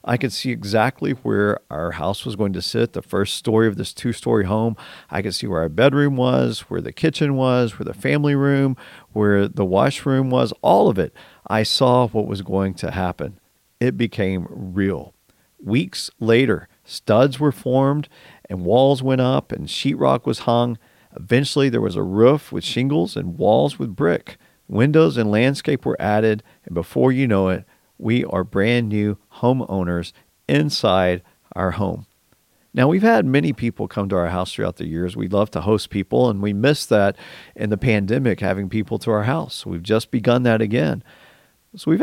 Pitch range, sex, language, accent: 95-125 Hz, male, English, American